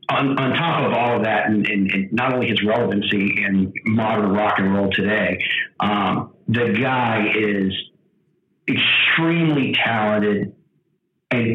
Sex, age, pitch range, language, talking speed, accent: male, 40-59, 105-130 Hz, English, 140 wpm, American